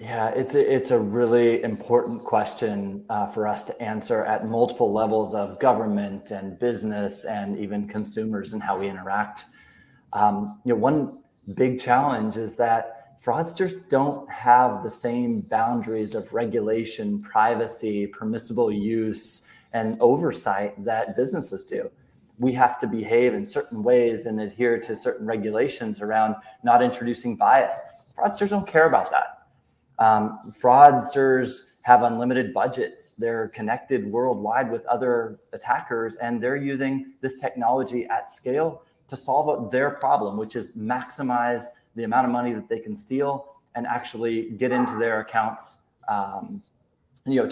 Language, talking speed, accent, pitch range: English, 145 wpm, American, 110-130 Hz